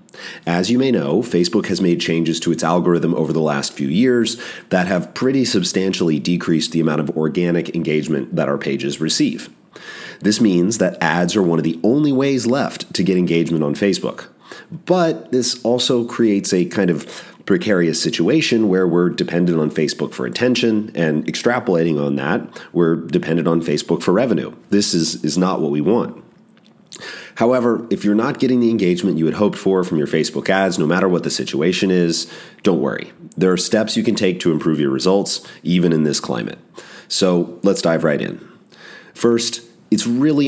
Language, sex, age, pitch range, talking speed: English, male, 30-49, 80-110 Hz, 185 wpm